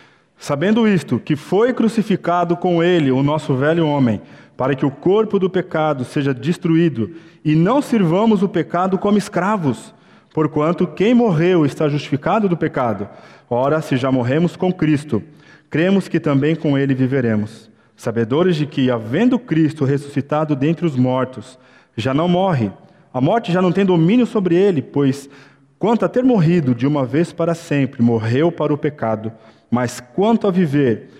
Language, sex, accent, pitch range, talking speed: Portuguese, male, Brazilian, 130-185 Hz, 160 wpm